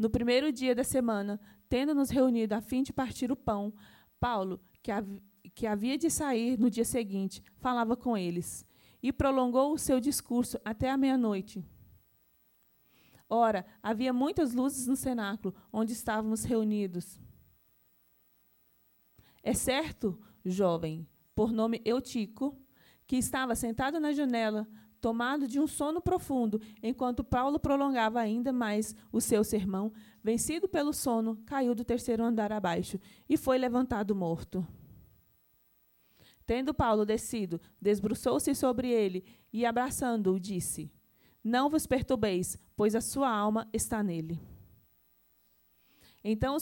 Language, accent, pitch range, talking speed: Portuguese, Brazilian, 210-260 Hz, 125 wpm